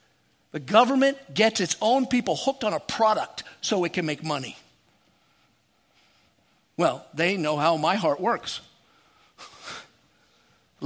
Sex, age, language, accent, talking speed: male, 50-69, English, American, 120 wpm